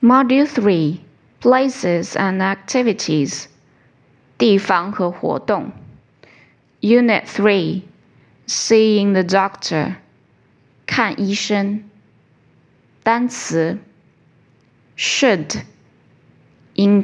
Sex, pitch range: female, 135-210 Hz